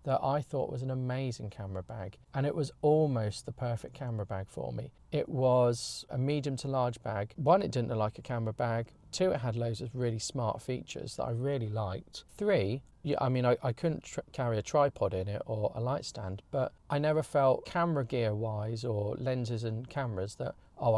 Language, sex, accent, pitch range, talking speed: English, male, British, 110-135 Hz, 210 wpm